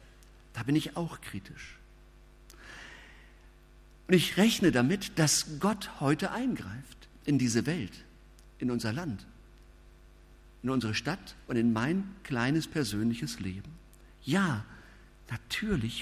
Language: German